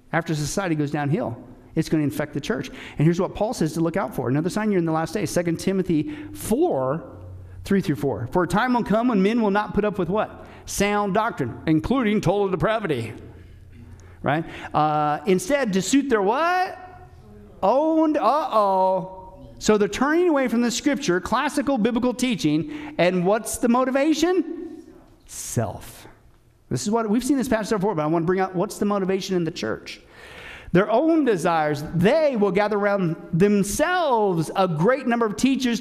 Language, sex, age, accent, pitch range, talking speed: English, male, 50-69, American, 165-240 Hz, 175 wpm